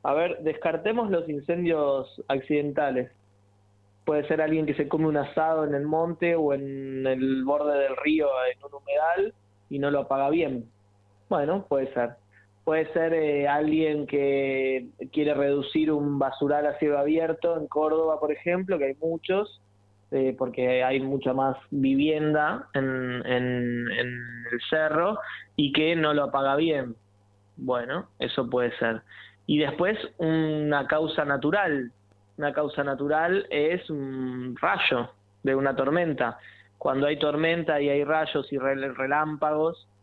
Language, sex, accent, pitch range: Spanish, male, Argentinian, 130-155 Hz